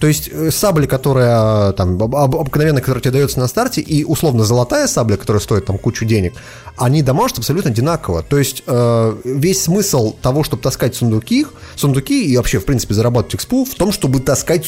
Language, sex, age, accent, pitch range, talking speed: Russian, male, 30-49, native, 120-155 Hz, 170 wpm